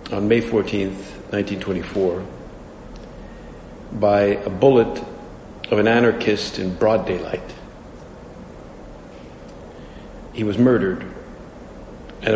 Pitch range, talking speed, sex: 100-115 Hz, 85 wpm, male